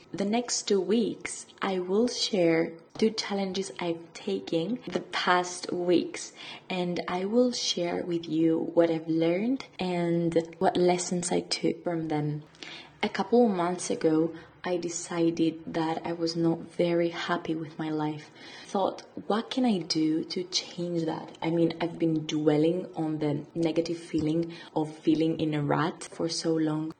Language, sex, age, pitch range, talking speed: English, female, 20-39, 160-180 Hz, 160 wpm